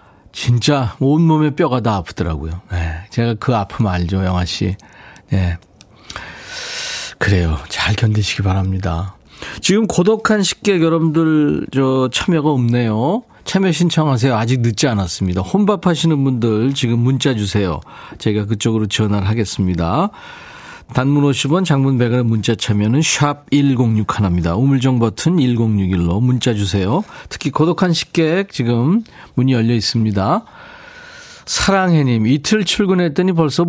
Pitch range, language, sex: 105-160 Hz, Korean, male